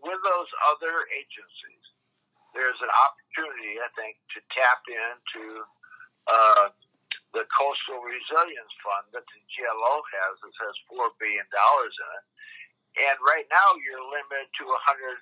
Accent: American